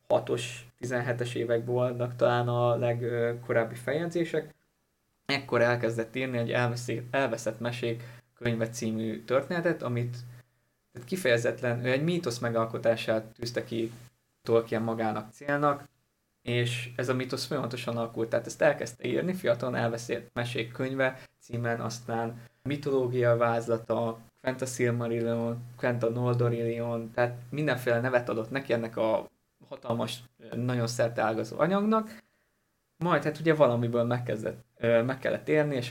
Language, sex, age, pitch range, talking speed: Hungarian, male, 20-39, 115-125 Hz, 115 wpm